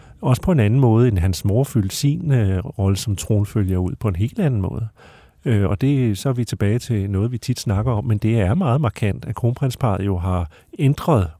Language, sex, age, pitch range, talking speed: Danish, male, 40-59, 105-130 Hz, 225 wpm